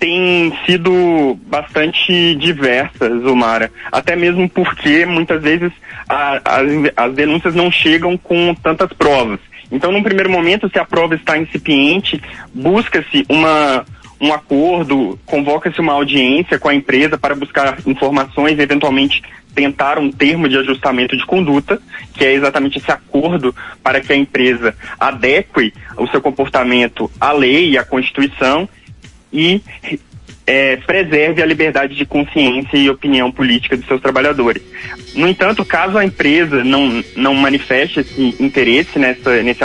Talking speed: 135 wpm